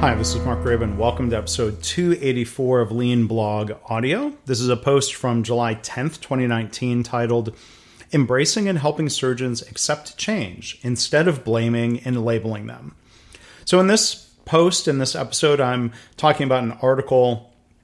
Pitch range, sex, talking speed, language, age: 115-145 Hz, male, 155 wpm, English, 30-49